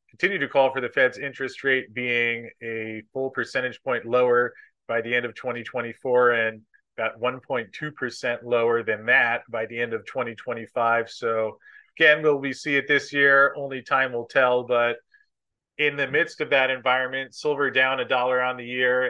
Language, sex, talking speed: English, male, 175 wpm